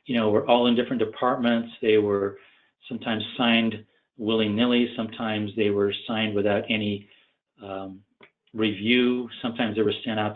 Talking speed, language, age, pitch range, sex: 145 wpm, English, 40-59, 105-120 Hz, male